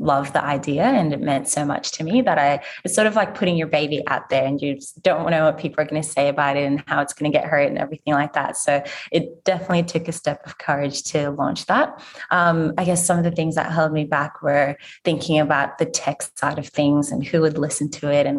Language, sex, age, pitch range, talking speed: English, female, 20-39, 145-170 Hz, 265 wpm